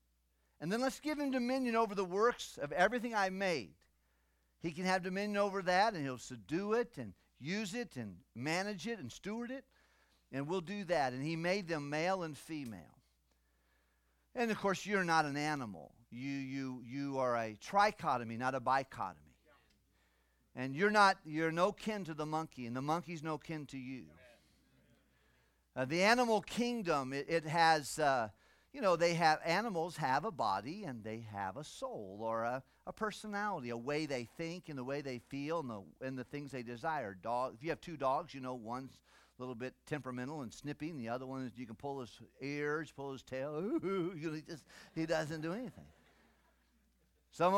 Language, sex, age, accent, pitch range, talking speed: English, male, 50-69, American, 125-185 Hz, 195 wpm